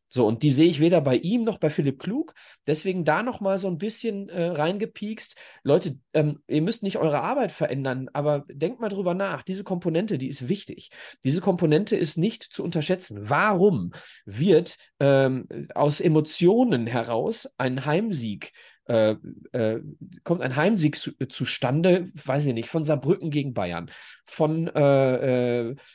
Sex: male